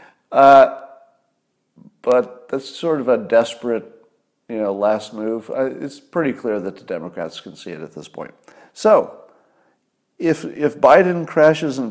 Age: 50-69